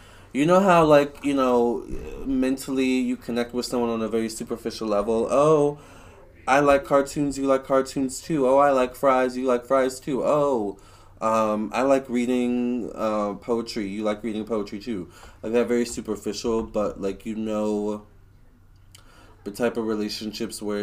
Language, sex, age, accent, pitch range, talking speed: English, male, 20-39, American, 100-130 Hz, 165 wpm